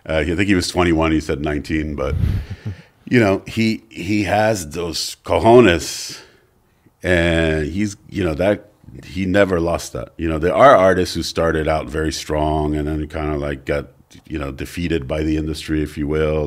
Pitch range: 75-95 Hz